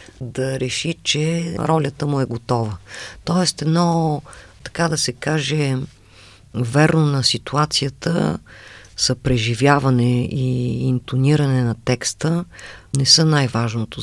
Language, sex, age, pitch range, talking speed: Bulgarian, female, 50-69, 110-145 Hz, 105 wpm